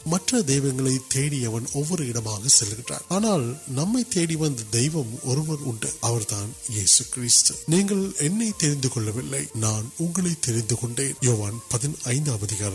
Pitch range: 115-140 Hz